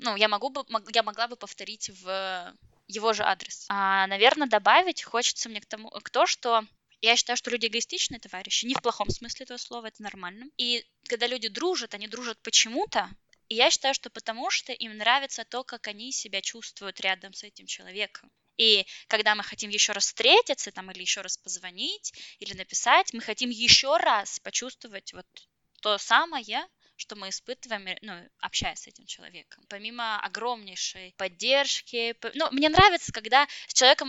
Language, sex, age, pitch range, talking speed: Russian, female, 10-29, 210-255 Hz, 175 wpm